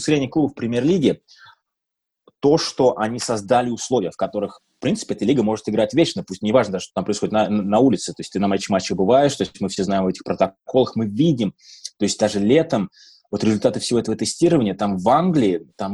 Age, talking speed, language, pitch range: 20-39, 215 wpm, Russian, 95-115 Hz